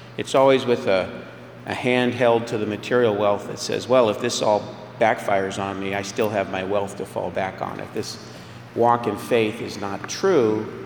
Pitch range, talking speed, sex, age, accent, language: 105-125 Hz, 205 wpm, male, 40-59, American, English